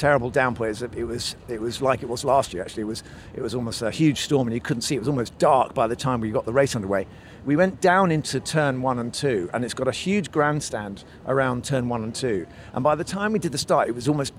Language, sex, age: English, male, 50-69